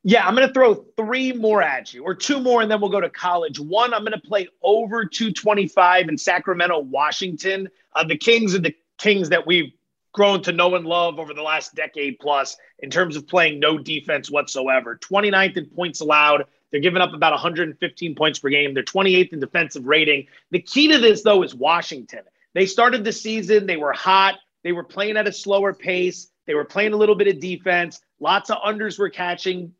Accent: American